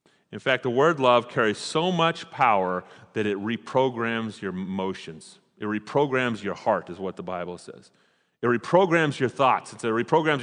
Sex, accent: male, American